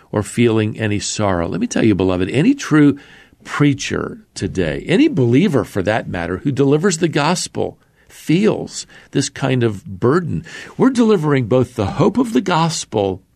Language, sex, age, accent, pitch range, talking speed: English, male, 50-69, American, 100-135 Hz, 155 wpm